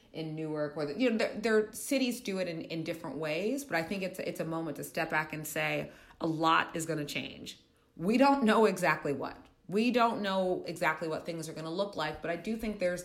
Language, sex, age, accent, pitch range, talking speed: English, female, 30-49, American, 150-185 Hz, 250 wpm